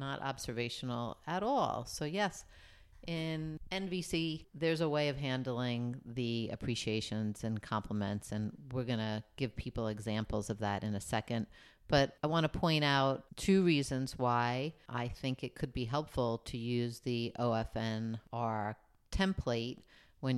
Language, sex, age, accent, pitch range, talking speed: English, female, 50-69, American, 115-150 Hz, 145 wpm